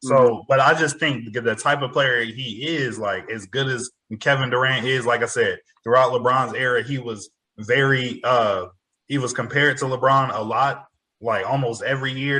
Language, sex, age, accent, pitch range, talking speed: English, male, 20-39, American, 130-150 Hz, 190 wpm